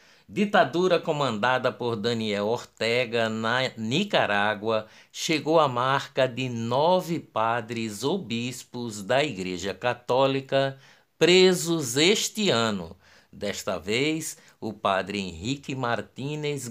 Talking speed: 95 wpm